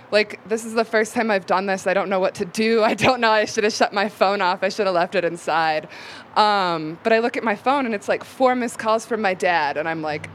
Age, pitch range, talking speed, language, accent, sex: 20-39, 170-225 Hz, 290 wpm, English, American, female